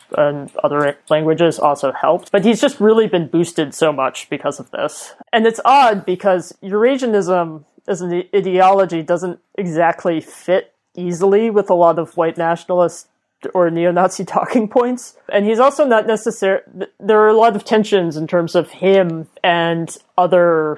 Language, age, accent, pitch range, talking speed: English, 30-49, American, 160-195 Hz, 160 wpm